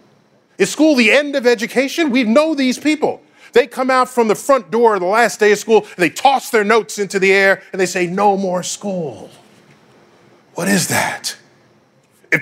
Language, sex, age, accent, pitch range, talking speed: English, male, 40-59, American, 165-235 Hz, 200 wpm